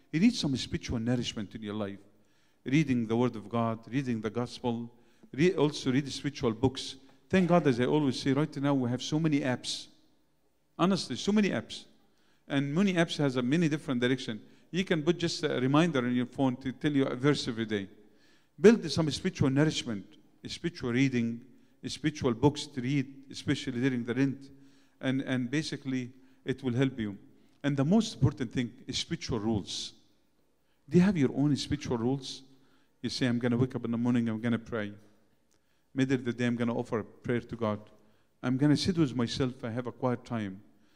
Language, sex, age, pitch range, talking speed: English, male, 50-69, 115-140 Hz, 190 wpm